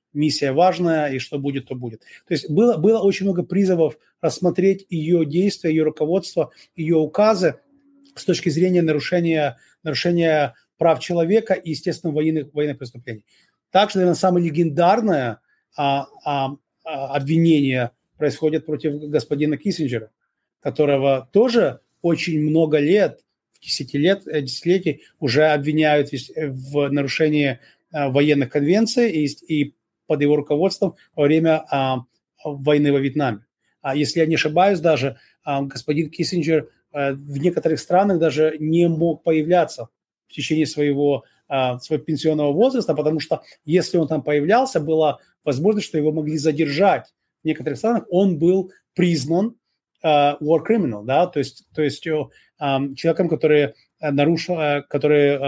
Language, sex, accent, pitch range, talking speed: Russian, male, native, 145-170 Hz, 130 wpm